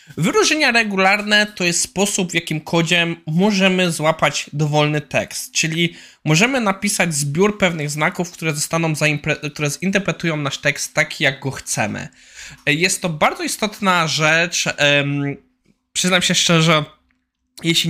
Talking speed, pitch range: 130 wpm, 135-180 Hz